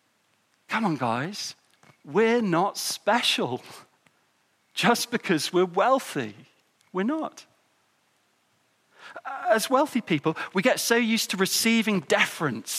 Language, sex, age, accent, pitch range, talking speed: English, male, 40-59, British, 140-225 Hz, 105 wpm